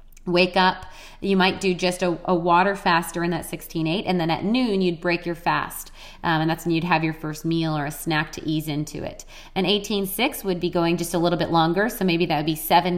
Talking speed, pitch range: 255 wpm, 160-185 Hz